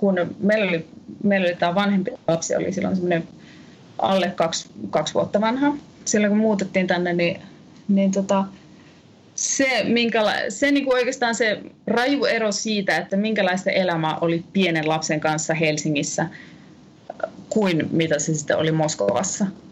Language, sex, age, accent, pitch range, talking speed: Finnish, female, 30-49, native, 165-205 Hz, 135 wpm